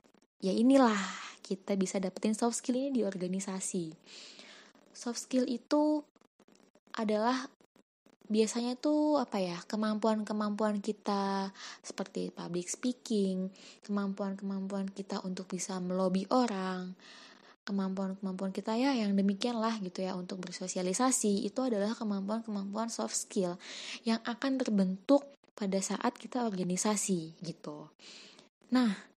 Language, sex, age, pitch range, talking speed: Indonesian, female, 20-39, 195-255 Hz, 105 wpm